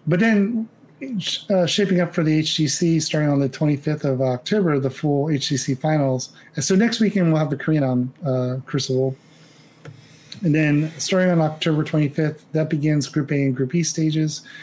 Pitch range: 140-160 Hz